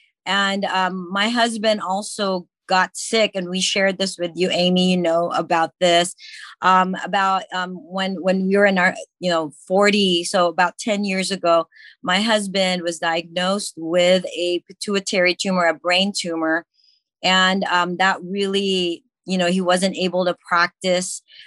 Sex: female